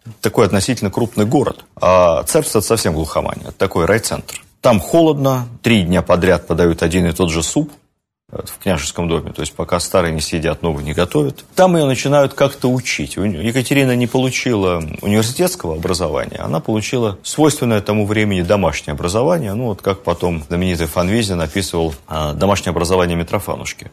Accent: native